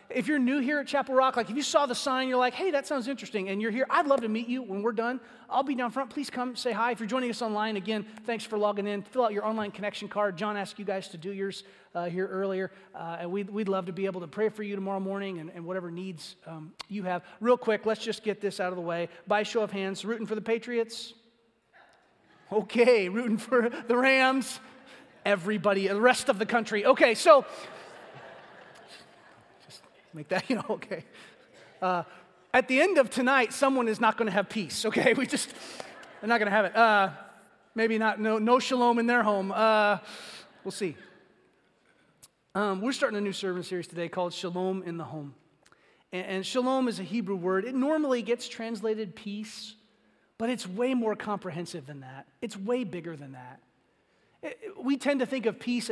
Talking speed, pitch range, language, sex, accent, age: 210 wpm, 190-245 Hz, English, male, American, 30-49